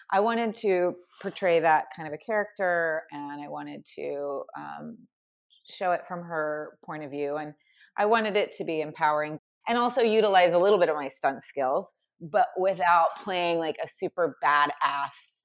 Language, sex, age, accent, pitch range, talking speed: English, female, 30-49, American, 150-185 Hz, 175 wpm